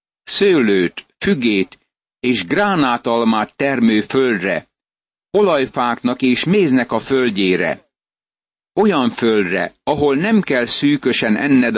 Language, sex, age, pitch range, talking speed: Hungarian, male, 60-79, 110-140 Hz, 90 wpm